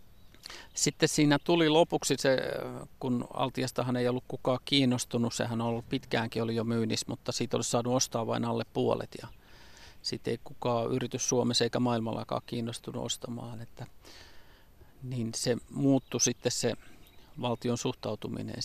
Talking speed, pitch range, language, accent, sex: 140 wpm, 110-125 Hz, Finnish, native, male